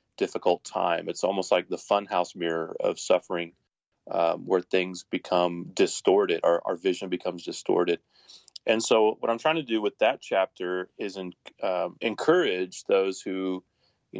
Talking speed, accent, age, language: 150 wpm, American, 30-49, English